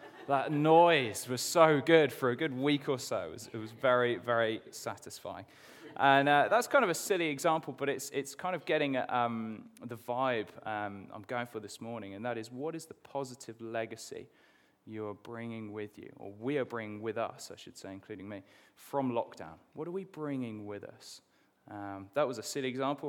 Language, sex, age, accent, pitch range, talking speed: English, male, 20-39, British, 110-150 Hz, 205 wpm